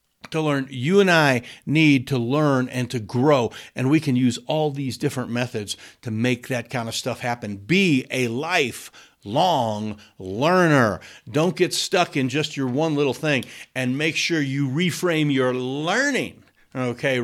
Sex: male